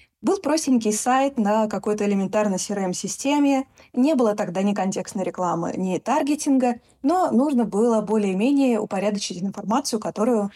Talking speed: 125 wpm